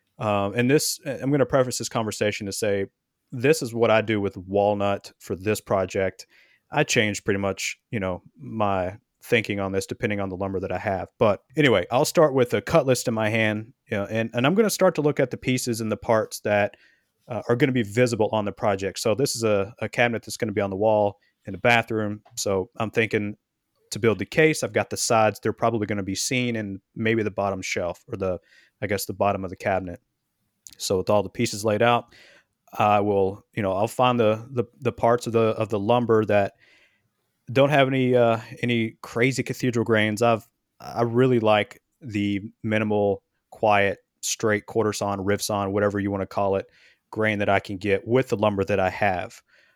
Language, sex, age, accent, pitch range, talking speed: English, male, 30-49, American, 100-120 Hz, 220 wpm